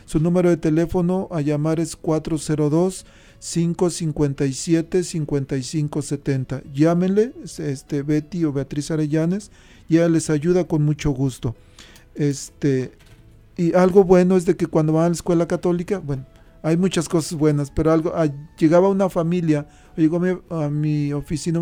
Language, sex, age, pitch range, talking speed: Spanish, male, 40-59, 145-175 Hz, 145 wpm